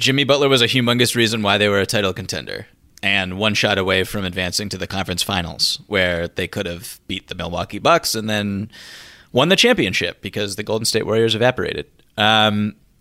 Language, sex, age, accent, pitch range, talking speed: English, male, 30-49, American, 100-115 Hz, 195 wpm